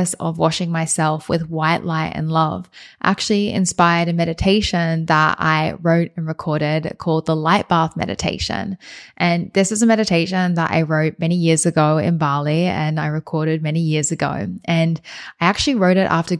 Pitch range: 160-185 Hz